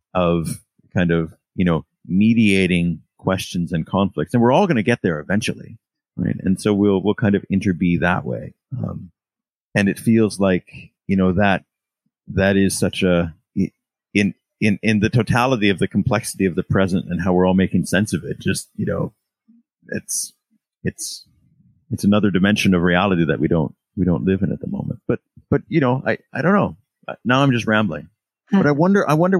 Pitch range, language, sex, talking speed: 90-110 Hz, English, male, 195 wpm